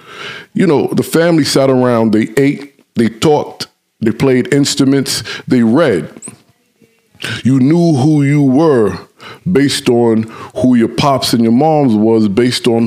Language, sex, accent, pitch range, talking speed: English, male, American, 120-145 Hz, 145 wpm